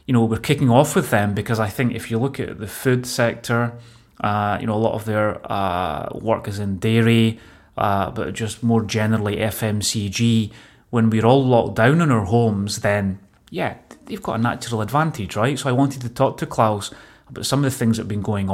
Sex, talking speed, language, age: male, 215 wpm, English, 30-49